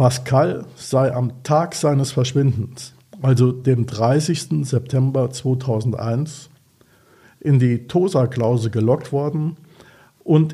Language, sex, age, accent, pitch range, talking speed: German, male, 50-69, German, 120-140 Hz, 95 wpm